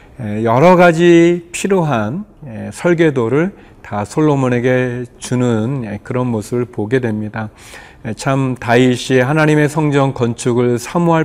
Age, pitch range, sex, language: 40-59, 110-145 Hz, male, Korean